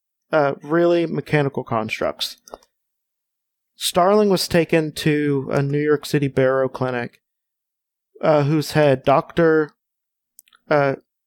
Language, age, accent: English, 30-49, American